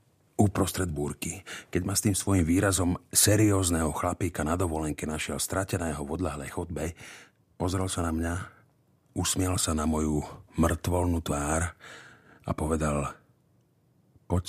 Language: Slovak